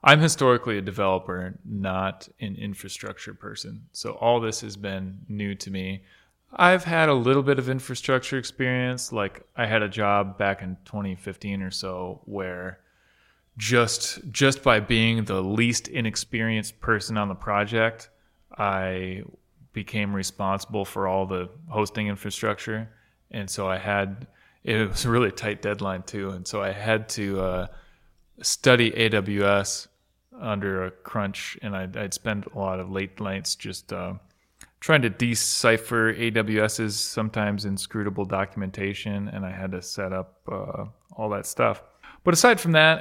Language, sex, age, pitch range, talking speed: English, male, 30-49, 95-115 Hz, 150 wpm